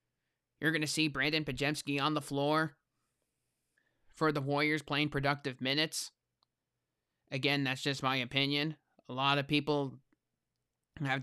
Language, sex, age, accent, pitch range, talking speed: English, male, 20-39, American, 135-155 Hz, 135 wpm